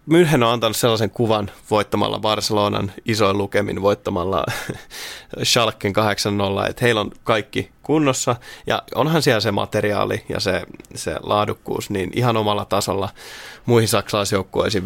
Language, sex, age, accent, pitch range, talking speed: Finnish, male, 20-39, native, 105-130 Hz, 130 wpm